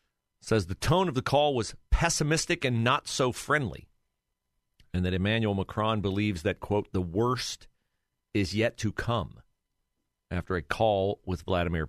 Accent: American